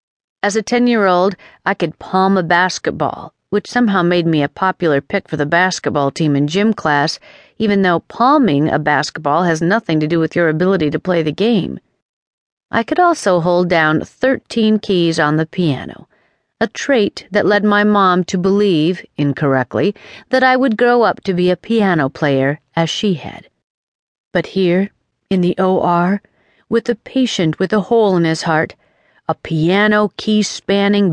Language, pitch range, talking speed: English, 155-205 Hz, 170 wpm